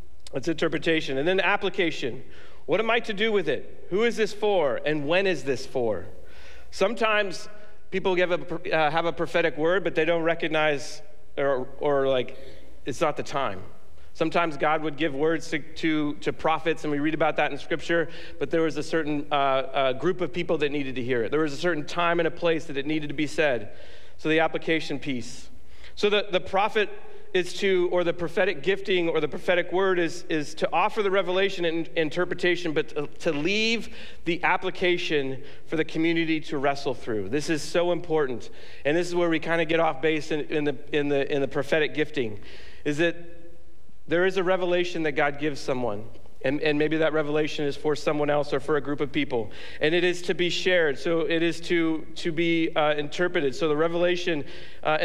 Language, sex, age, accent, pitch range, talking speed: English, male, 40-59, American, 150-180 Hz, 205 wpm